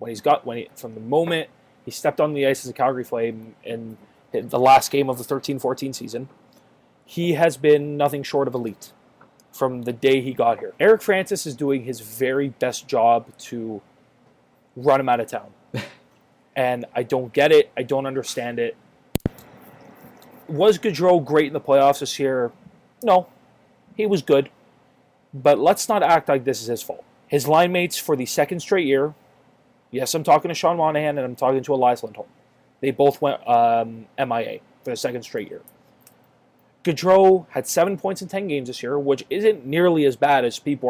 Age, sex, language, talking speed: 20-39, male, English, 185 wpm